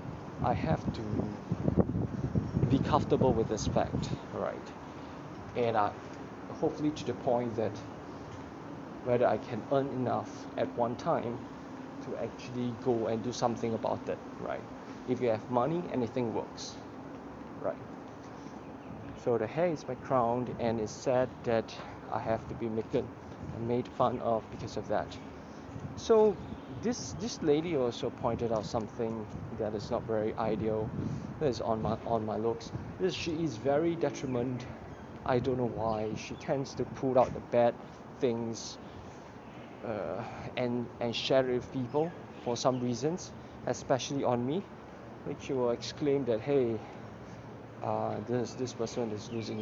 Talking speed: 150 wpm